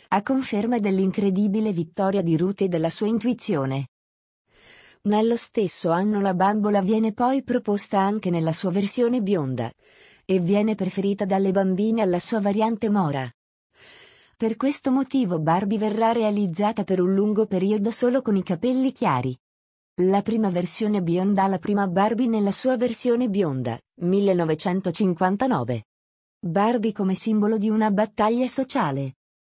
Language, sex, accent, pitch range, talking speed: Italian, female, native, 175-220 Hz, 135 wpm